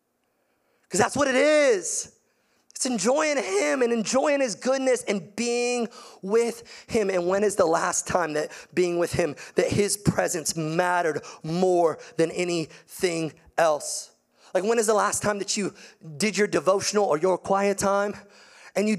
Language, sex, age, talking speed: English, male, 30-49, 160 wpm